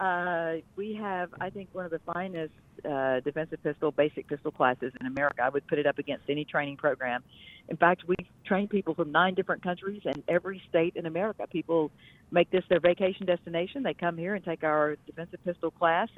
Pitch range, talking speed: 155-190 Hz, 205 wpm